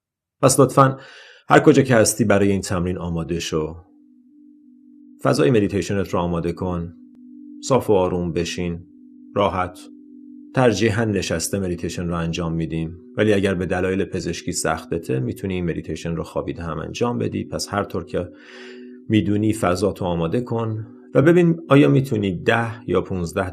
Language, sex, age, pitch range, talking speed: Persian, male, 30-49, 85-125 Hz, 145 wpm